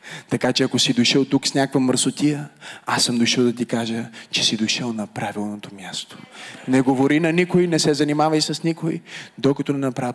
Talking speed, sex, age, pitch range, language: 195 wpm, male, 20-39, 130-170 Hz, Bulgarian